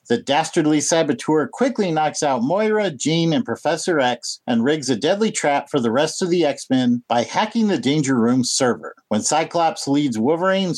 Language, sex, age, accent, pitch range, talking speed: English, male, 50-69, American, 145-205 Hz, 180 wpm